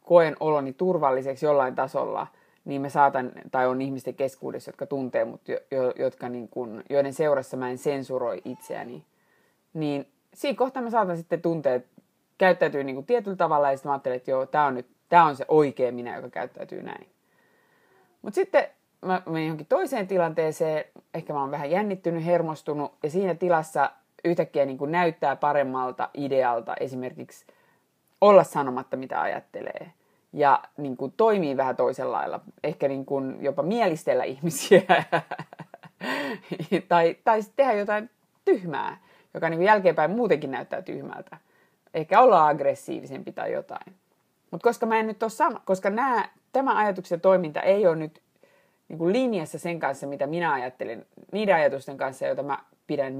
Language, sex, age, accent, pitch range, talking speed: Finnish, female, 20-39, native, 140-200 Hz, 145 wpm